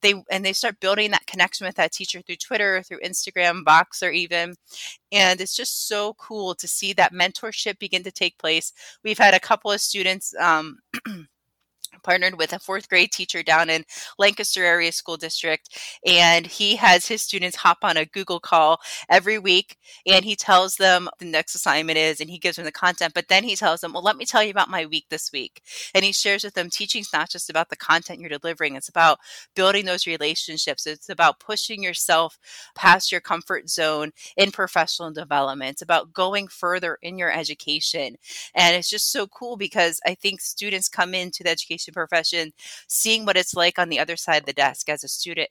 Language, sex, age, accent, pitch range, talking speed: English, female, 20-39, American, 165-195 Hz, 205 wpm